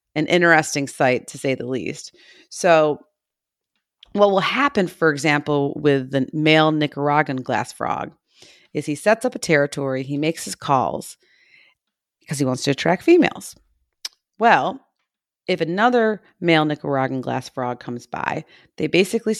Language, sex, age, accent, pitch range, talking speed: English, female, 40-59, American, 140-185 Hz, 140 wpm